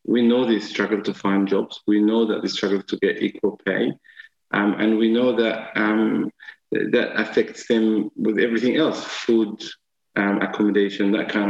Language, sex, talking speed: English, male, 175 wpm